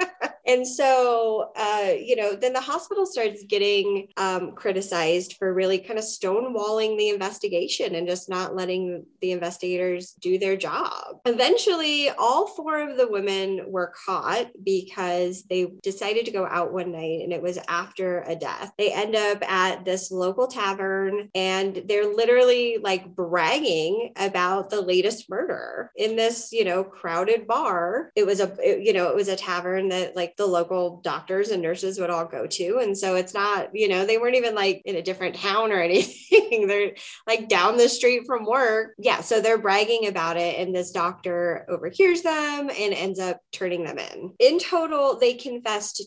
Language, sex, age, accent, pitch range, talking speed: English, female, 20-39, American, 180-250 Hz, 180 wpm